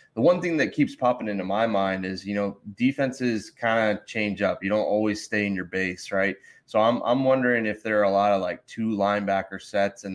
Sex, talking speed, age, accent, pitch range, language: male, 235 wpm, 20-39, American, 95-110 Hz, English